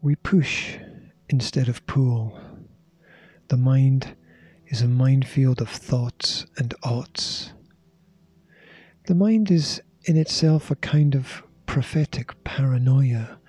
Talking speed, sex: 105 wpm, male